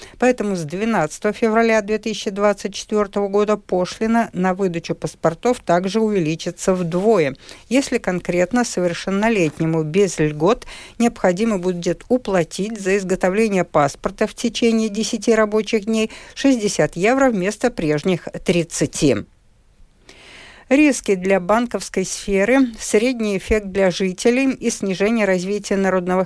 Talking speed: 105 wpm